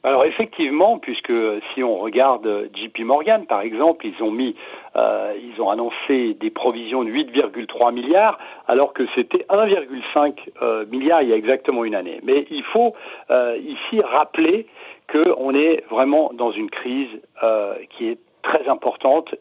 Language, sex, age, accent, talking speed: French, male, 60-79, French, 150 wpm